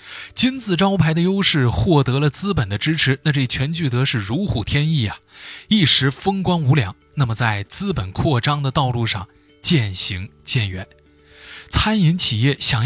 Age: 20-39